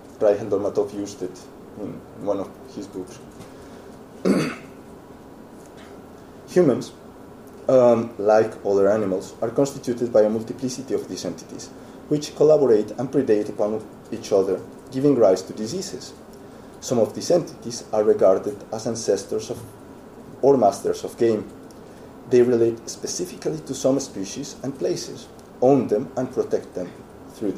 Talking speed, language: 130 wpm, English